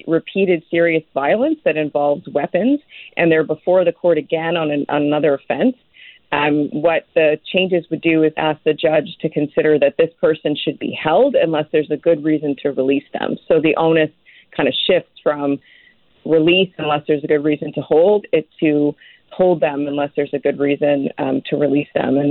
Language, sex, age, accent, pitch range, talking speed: English, female, 30-49, American, 145-165 Hz, 195 wpm